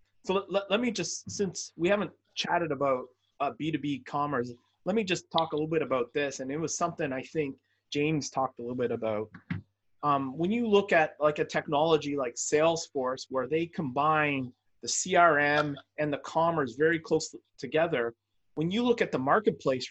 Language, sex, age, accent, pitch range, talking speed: English, male, 30-49, American, 135-175 Hz, 190 wpm